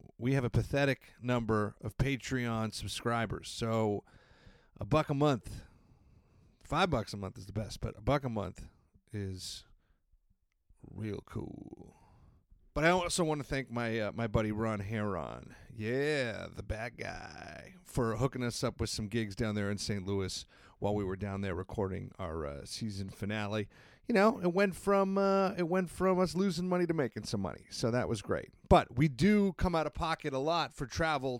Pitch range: 100-135 Hz